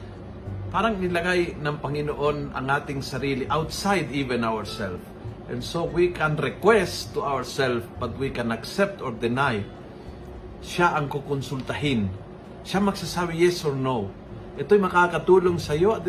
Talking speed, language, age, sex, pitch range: 130 wpm, Filipino, 50-69, male, 125-175 Hz